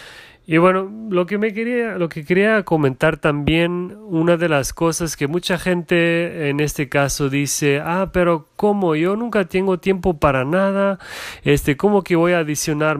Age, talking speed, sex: 30-49, 170 wpm, male